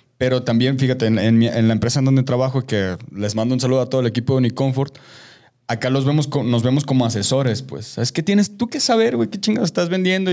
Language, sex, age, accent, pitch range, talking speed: Spanish, male, 20-39, Mexican, 120-145 Hz, 245 wpm